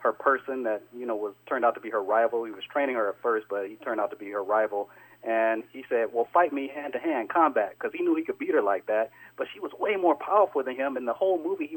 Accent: American